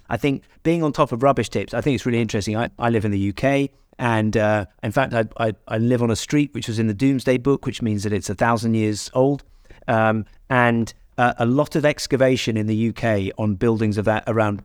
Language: English